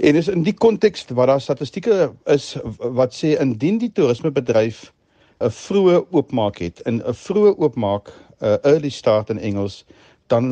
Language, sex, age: English, male, 50-69